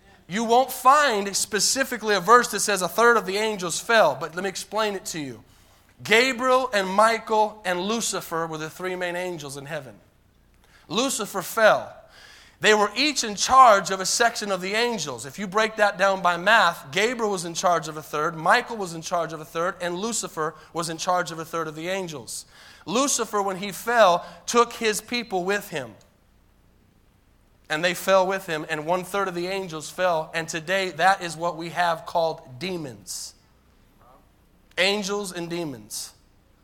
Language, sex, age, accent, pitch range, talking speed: English, male, 30-49, American, 150-205 Hz, 180 wpm